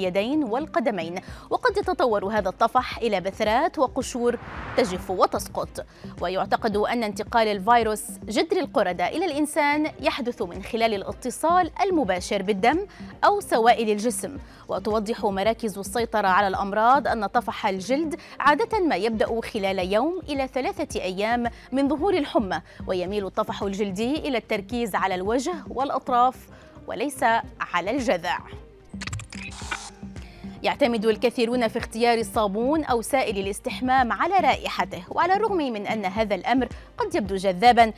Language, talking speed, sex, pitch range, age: Arabic, 120 wpm, female, 205-285 Hz, 20-39